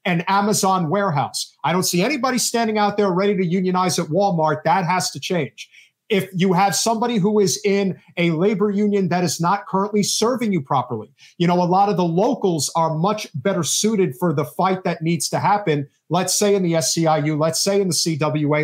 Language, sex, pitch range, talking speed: English, male, 150-200 Hz, 205 wpm